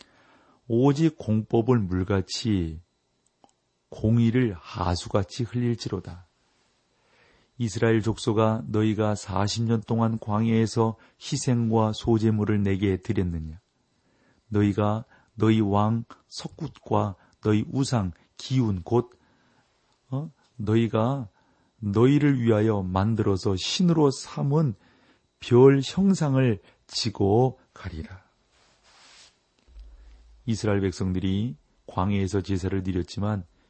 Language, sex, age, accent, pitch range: Korean, male, 40-59, native, 95-120 Hz